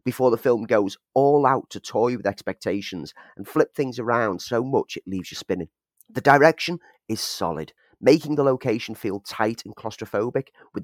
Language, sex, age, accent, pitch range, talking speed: English, male, 30-49, British, 100-130 Hz, 175 wpm